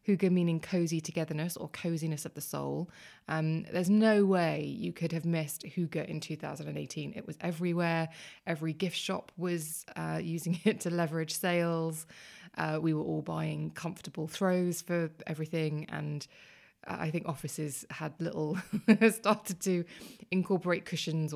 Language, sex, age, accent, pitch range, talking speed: English, female, 20-39, British, 155-195 Hz, 145 wpm